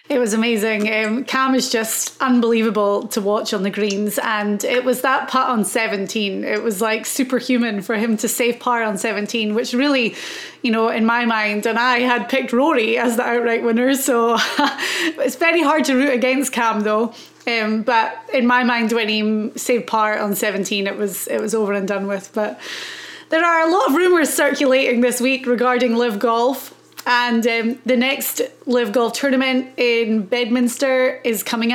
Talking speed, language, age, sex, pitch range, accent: 185 wpm, English, 30-49, female, 225-265 Hz, British